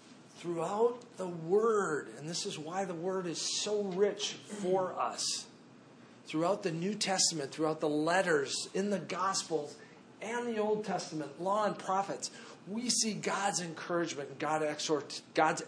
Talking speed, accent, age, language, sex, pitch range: 140 wpm, American, 40-59, English, male, 150-205 Hz